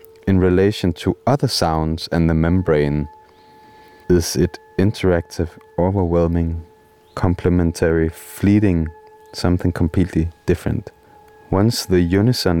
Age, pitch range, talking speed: 30-49, 85-125 Hz, 95 wpm